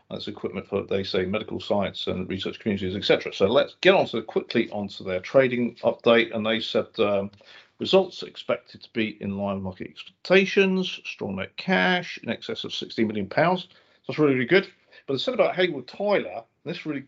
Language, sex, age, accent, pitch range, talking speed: English, male, 50-69, British, 105-135 Hz, 195 wpm